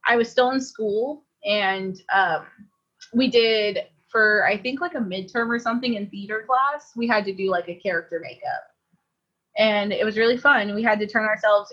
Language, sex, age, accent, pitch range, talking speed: English, female, 20-39, American, 200-255 Hz, 195 wpm